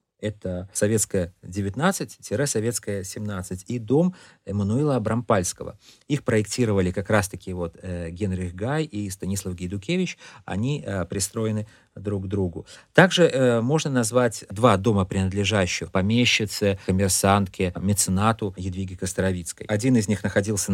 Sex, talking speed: male, 105 wpm